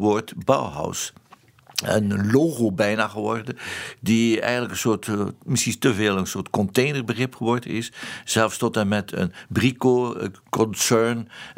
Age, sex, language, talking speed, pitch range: 60-79, male, Dutch, 130 wpm, 100-125 Hz